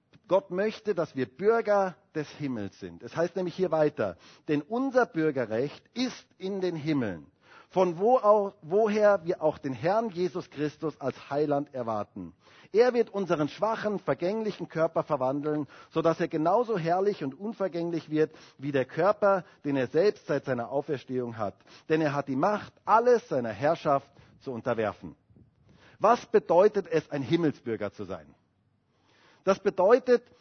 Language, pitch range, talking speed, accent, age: German, 145-220 Hz, 150 wpm, German, 40-59